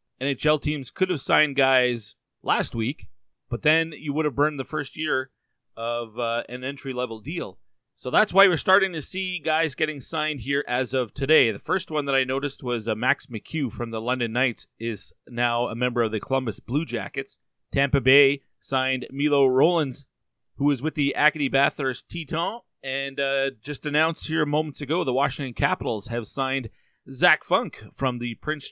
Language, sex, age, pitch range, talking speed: English, male, 30-49, 125-155 Hz, 185 wpm